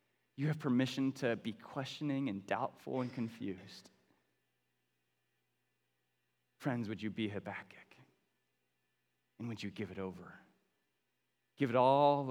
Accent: American